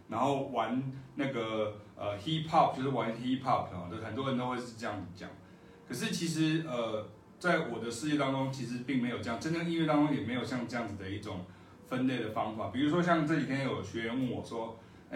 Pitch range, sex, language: 110-140 Hz, male, Chinese